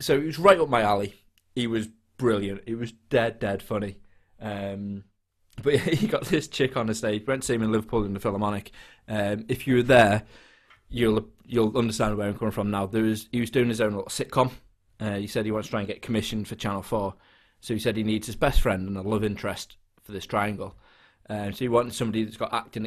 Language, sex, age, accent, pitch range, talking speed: English, male, 20-39, British, 105-125 Hz, 240 wpm